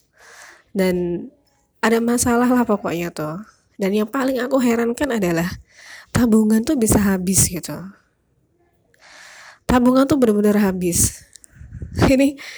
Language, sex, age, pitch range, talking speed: Indonesian, female, 20-39, 190-255 Hz, 105 wpm